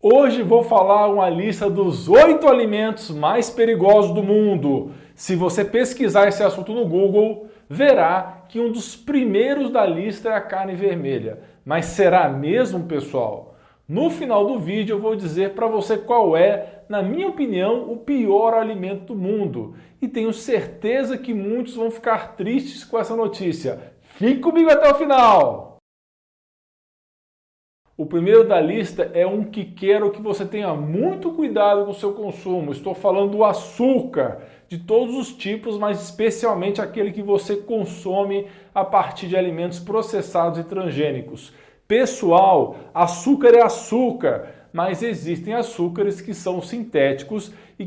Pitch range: 190-230 Hz